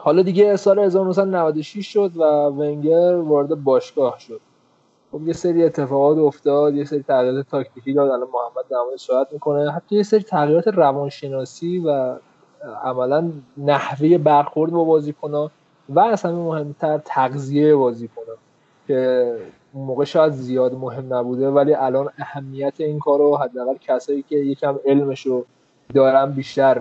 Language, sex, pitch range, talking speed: Persian, male, 135-165 Hz, 135 wpm